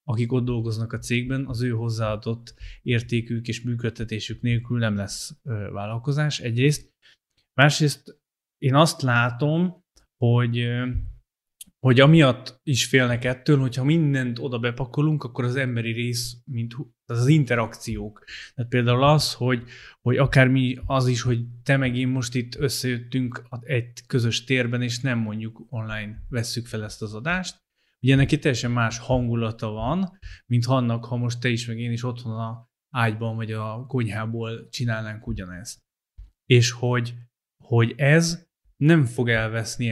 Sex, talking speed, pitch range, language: male, 145 wpm, 115-130 Hz, Hungarian